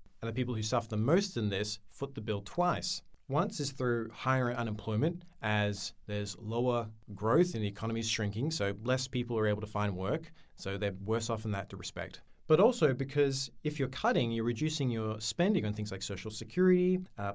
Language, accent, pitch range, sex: English, Australian, 105-135 Hz, male